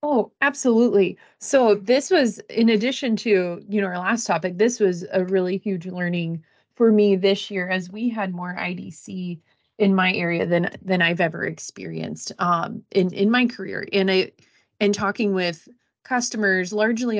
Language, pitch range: English, 170-205 Hz